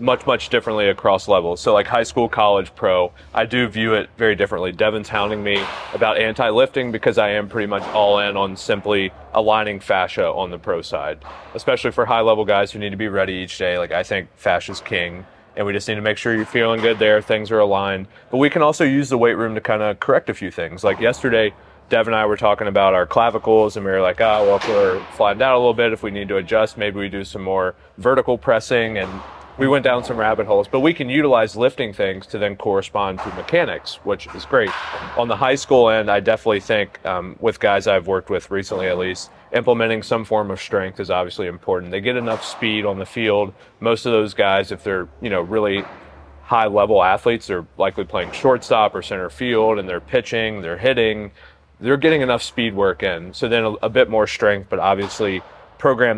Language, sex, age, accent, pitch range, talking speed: English, male, 30-49, American, 100-115 Hz, 225 wpm